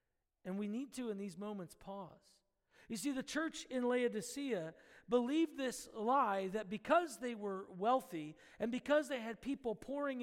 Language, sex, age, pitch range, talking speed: English, male, 40-59, 205-255 Hz, 165 wpm